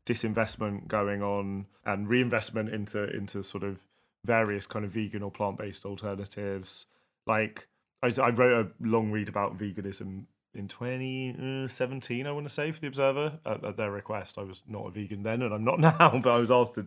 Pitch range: 100-120 Hz